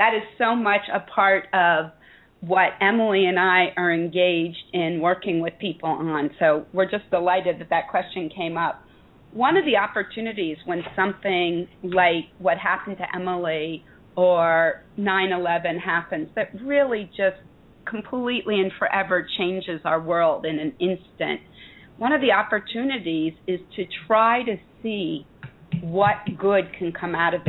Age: 40-59